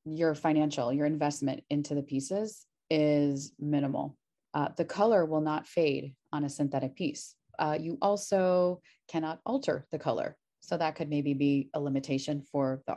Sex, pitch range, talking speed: female, 145-175 Hz, 160 wpm